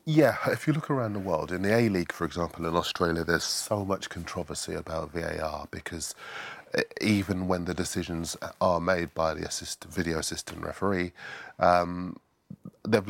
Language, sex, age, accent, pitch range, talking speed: English, male, 30-49, British, 85-100 Hz, 160 wpm